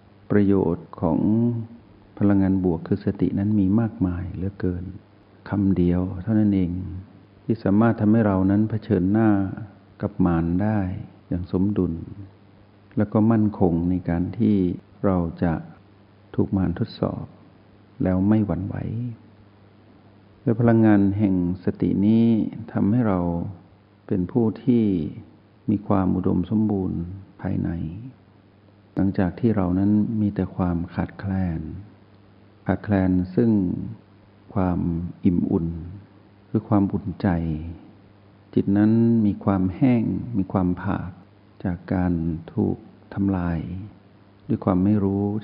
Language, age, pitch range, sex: Thai, 60-79, 95-105 Hz, male